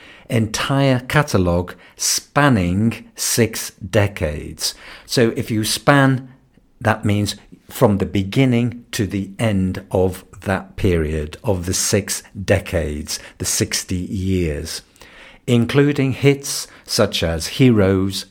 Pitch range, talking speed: 90-115 Hz, 105 wpm